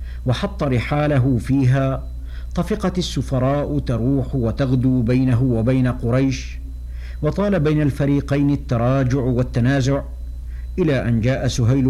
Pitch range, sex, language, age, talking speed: 110-130 Hz, male, Arabic, 60-79, 95 wpm